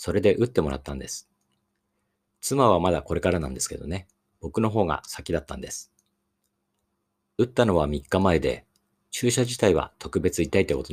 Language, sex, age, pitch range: Japanese, male, 50-69, 70-100 Hz